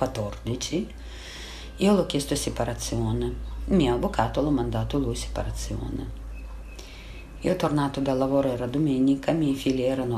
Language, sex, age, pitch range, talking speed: Italian, female, 50-69, 115-155 Hz, 135 wpm